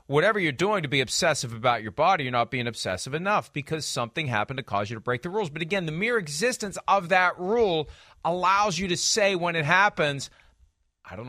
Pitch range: 135-190 Hz